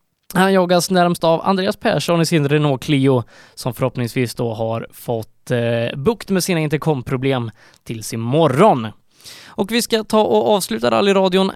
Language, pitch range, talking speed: Swedish, 135-185 Hz, 150 wpm